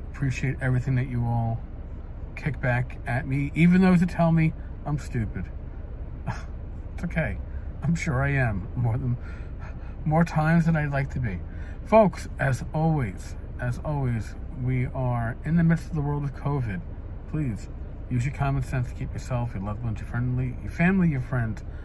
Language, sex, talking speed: English, male, 170 wpm